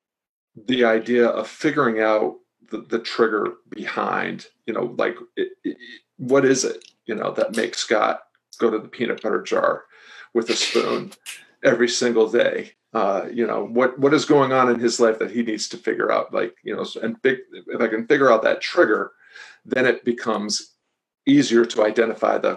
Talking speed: 185 wpm